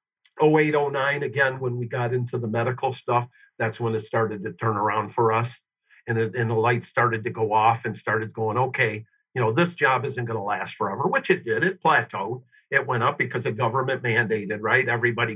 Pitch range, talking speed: 115-135 Hz, 210 wpm